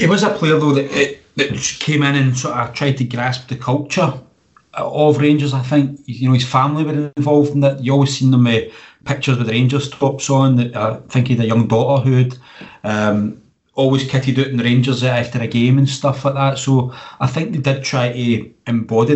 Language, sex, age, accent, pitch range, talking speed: English, male, 30-49, British, 120-140 Hz, 225 wpm